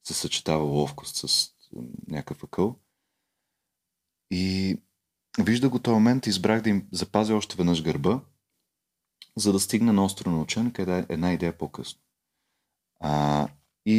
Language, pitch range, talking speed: Bulgarian, 70-90 Hz, 135 wpm